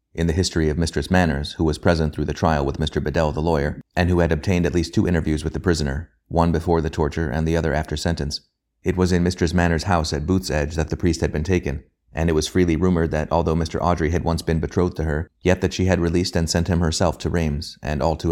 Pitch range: 75-90 Hz